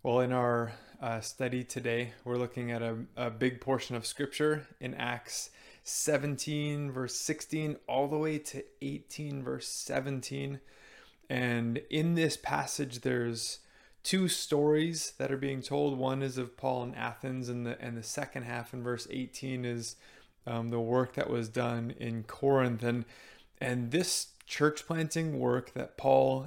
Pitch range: 120-145 Hz